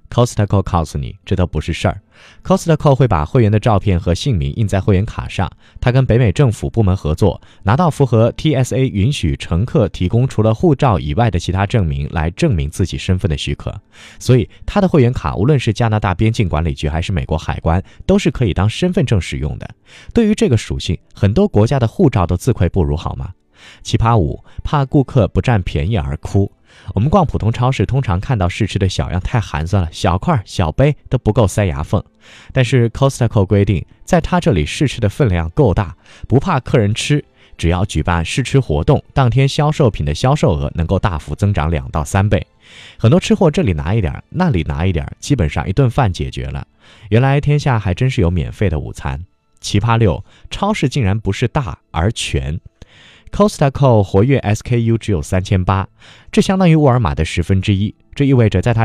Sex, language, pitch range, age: male, Chinese, 85-130 Hz, 20-39